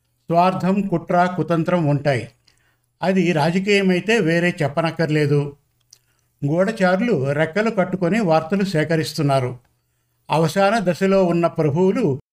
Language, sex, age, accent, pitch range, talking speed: Telugu, male, 50-69, native, 155-190 Hz, 90 wpm